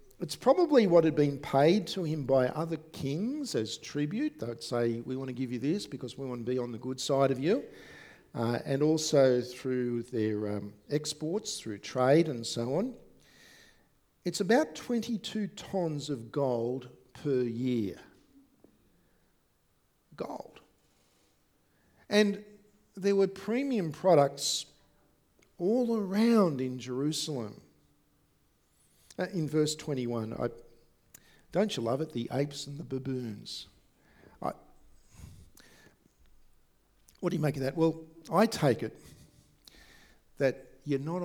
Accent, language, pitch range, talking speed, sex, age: Australian, English, 125-165 Hz, 130 wpm, male, 50-69